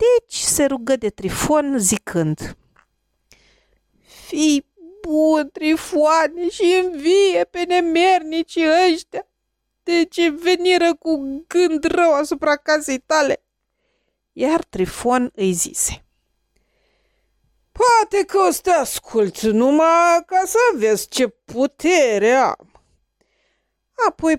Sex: female